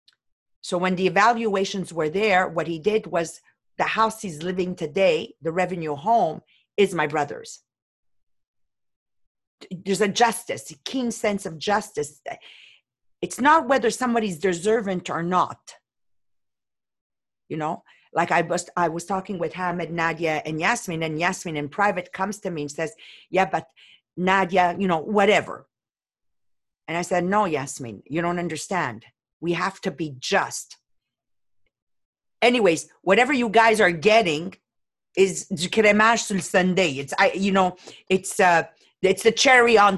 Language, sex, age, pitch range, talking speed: English, female, 50-69, 170-220 Hz, 140 wpm